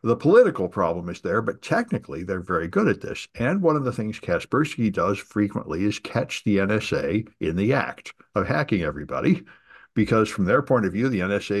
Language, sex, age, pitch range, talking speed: English, male, 60-79, 100-125 Hz, 195 wpm